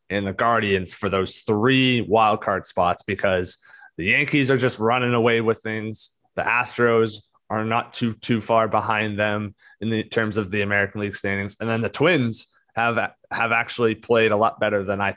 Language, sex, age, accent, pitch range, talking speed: English, male, 20-39, American, 100-120 Hz, 195 wpm